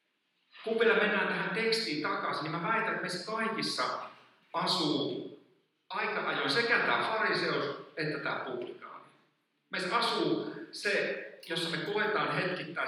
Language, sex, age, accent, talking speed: Finnish, male, 50-69, native, 125 wpm